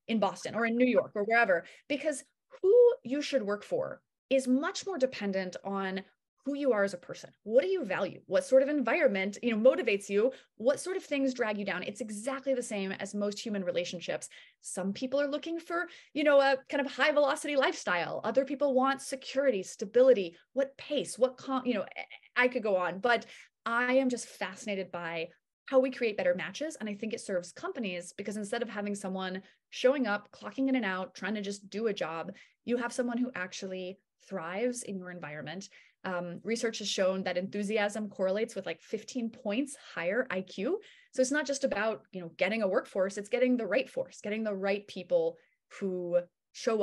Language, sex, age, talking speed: English, female, 30-49, 200 wpm